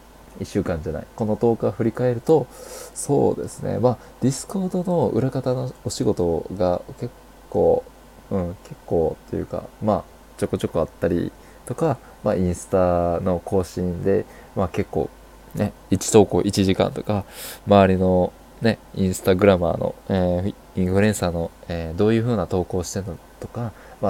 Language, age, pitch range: Japanese, 20-39, 90-125 Hz